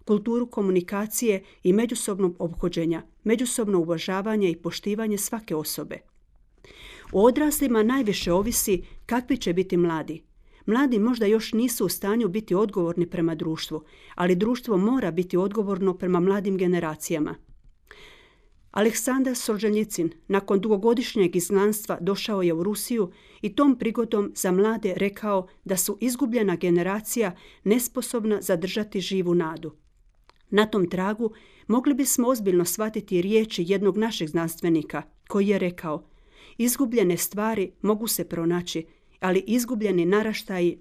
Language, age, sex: Croatian, 50-69, female